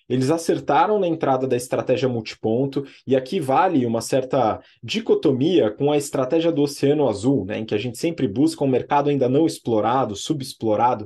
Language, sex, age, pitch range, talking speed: Portuguese, male, 20-39, 130-175 Hz, 175 wpm